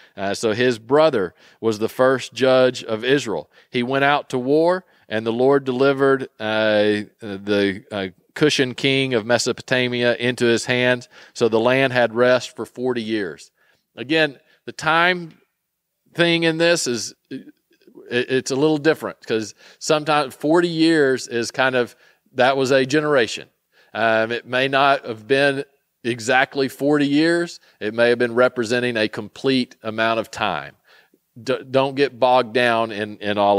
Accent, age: American, 40-59